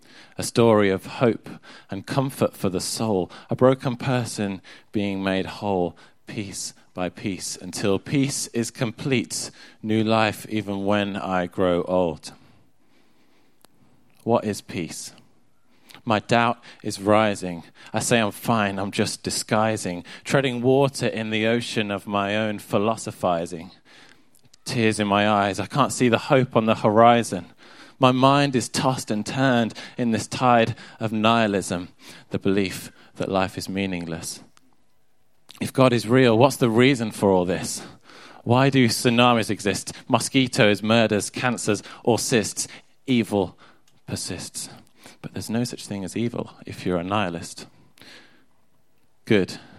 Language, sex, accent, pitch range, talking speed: English, male, British, 100-125 Hz, 135 wpm